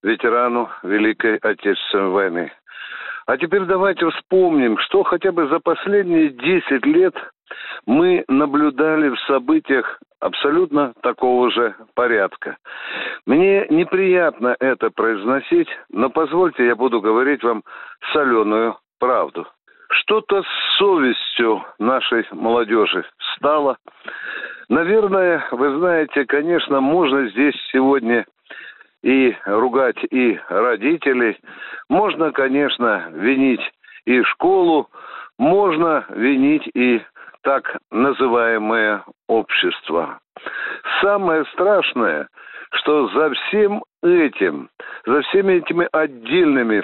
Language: Russian